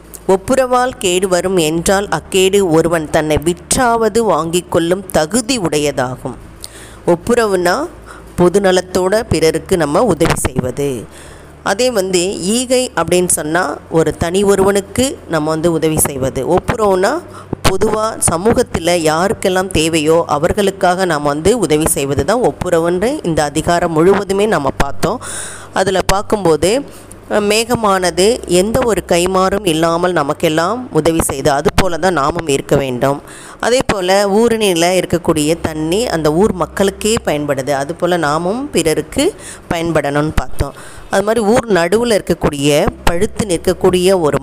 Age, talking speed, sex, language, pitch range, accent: 20-39, 115 wpm, female, Tamil, 155-195 Hz, native